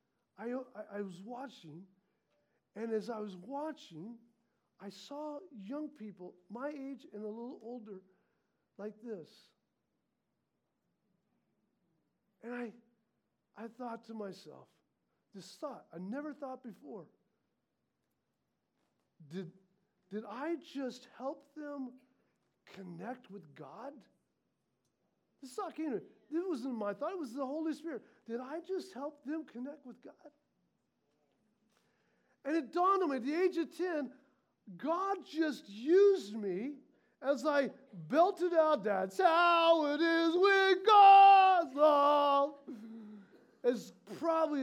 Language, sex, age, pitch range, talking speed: English, male, 50-69, 215-305 Hz, 120 wpm